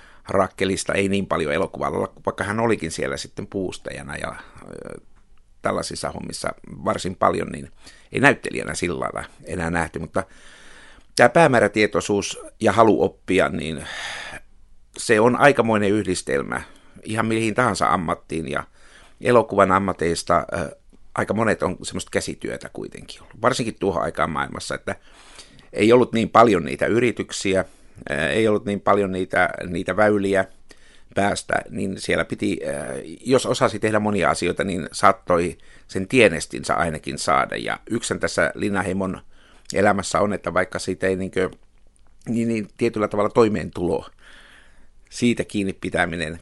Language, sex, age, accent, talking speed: Finnish, male, 60-79, native, 130 wpm